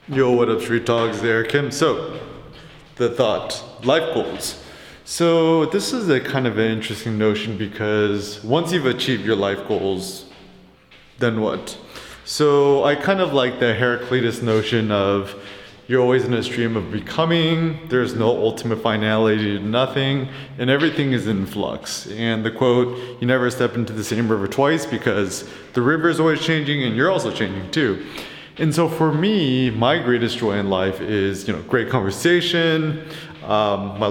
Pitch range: 110-145 Hz